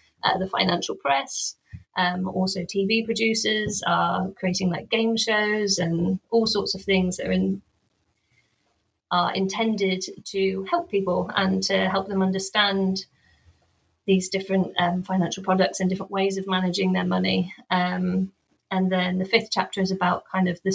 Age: 30-49